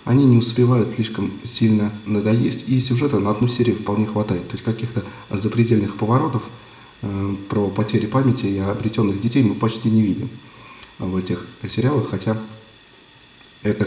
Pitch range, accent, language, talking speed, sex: 105-125 Hz, native, Russian, 145 wpm, male